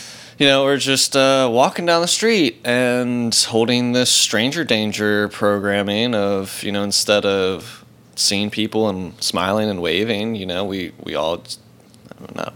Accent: American